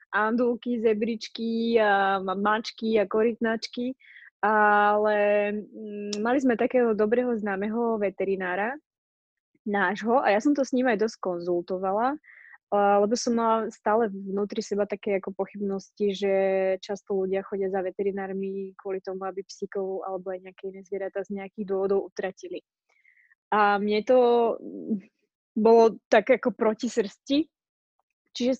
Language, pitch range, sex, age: Slovak, 200-230 Hz, female, 20-39